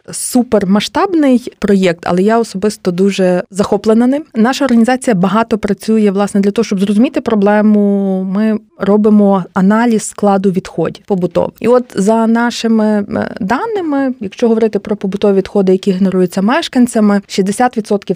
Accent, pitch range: native, 185-225 Hz